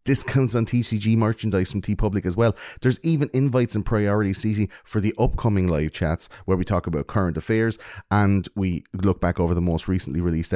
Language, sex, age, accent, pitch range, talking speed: English, male, 30-49, Irish, 90-120 Hz, 205 wpm